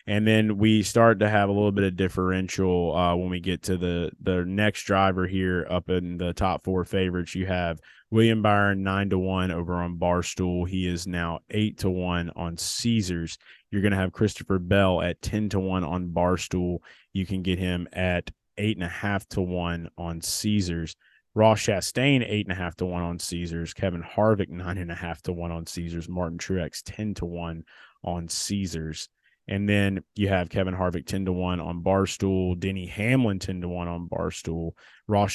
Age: 20-39